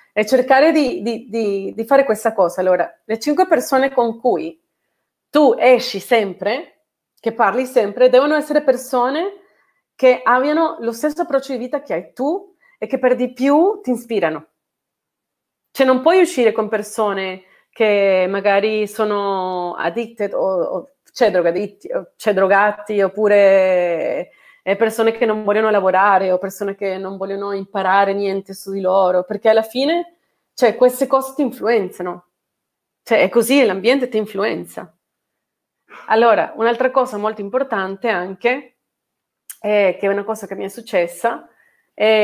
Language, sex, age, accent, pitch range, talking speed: Italian, female, 30-49, native, 195-260 Hz, 145 wpm